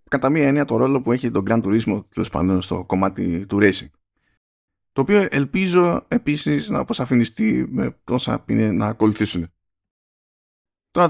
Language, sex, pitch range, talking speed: Greek, male, 105-135 Hz, 145 wpm